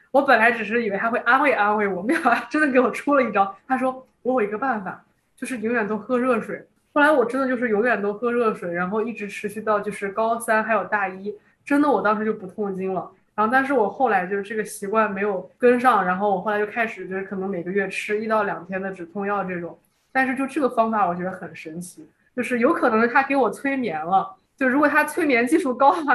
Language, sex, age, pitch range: Chinese, female, 20-39, 200-255 Hz